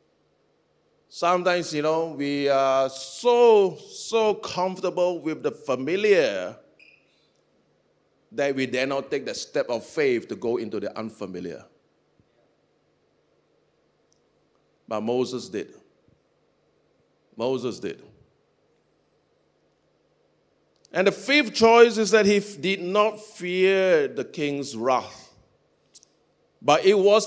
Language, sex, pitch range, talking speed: English, male, 180-270 Hz, 100 wpm